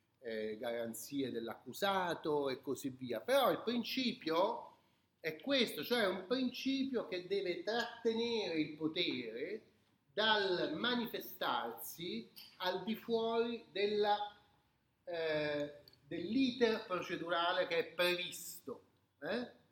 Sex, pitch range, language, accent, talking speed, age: male, 150-240 Hz, Italian, native, 95 wpm, 40-59